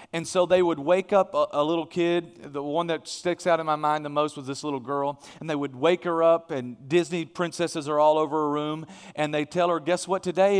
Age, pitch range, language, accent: 40-59, 150-195 Hz, English, American